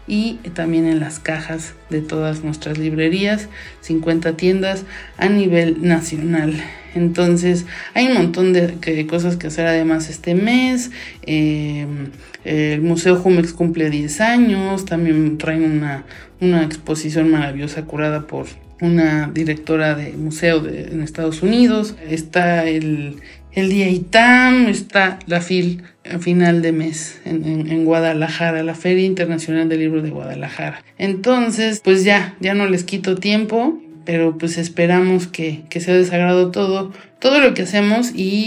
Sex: male